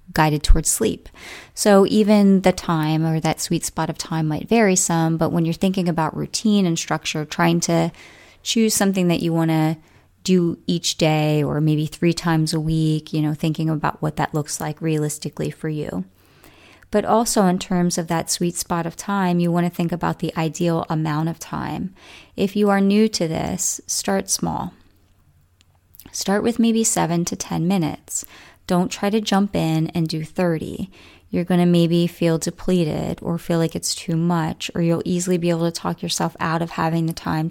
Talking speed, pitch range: 190 wpm, 160-190 Hz